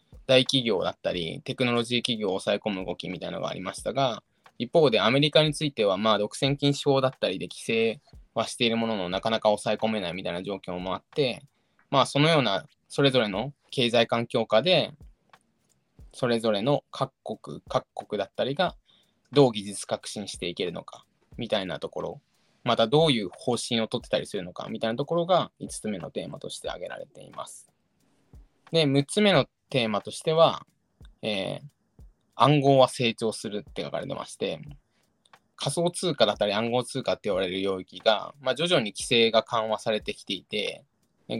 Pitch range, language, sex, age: 110-140 Hz, Japanese, male, 20-39